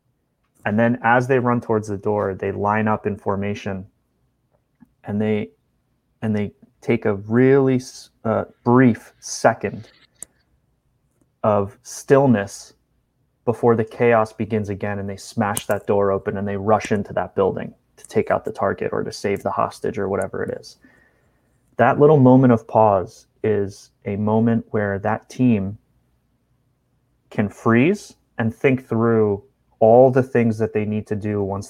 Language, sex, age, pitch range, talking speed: English, male, 30-49, 100-120 Hz, 155 wpm